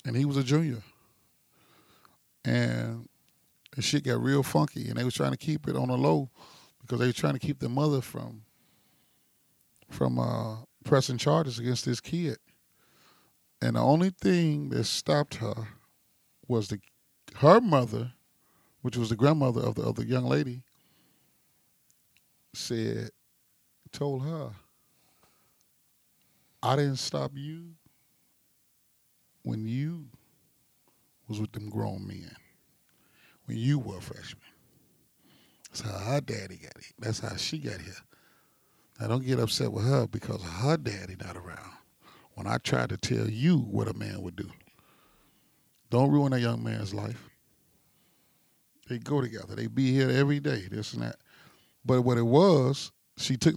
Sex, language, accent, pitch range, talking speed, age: male, English, American, 110-140 Hz, 145 wpm, 30-49